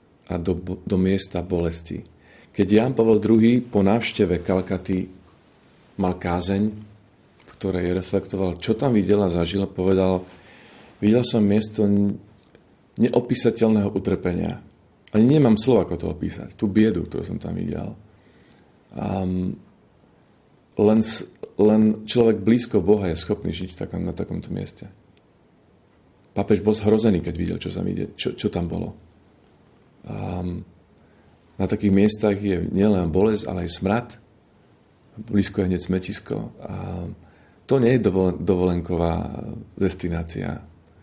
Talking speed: 115 wpm